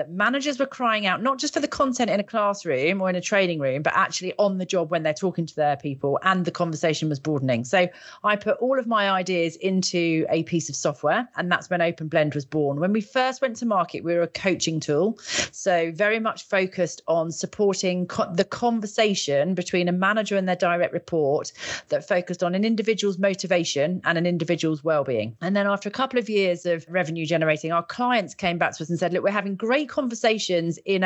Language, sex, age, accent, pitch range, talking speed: English, female, 40-59, British, 165-205 Hz, 220 wpm